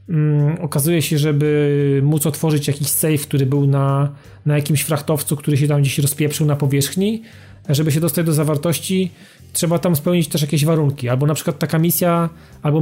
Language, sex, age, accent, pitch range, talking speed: Polish, male, 30-49, native, 140-160 Hz, 180 wpm